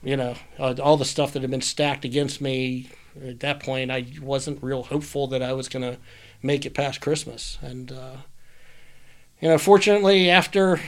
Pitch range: 145-195 Hz